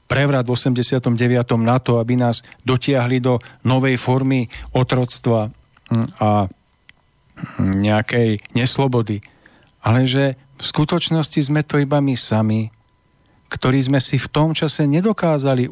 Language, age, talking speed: Slovak, 40-59, 120 wpm